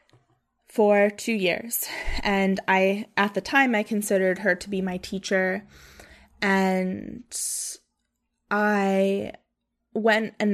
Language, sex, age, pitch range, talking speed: English, female, 10-29, 190-220 Hz, 110 wpm